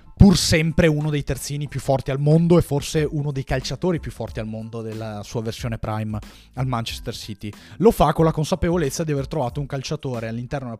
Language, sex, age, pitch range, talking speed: Italian, male, 30-49, 110-135 Hz, 205 wpm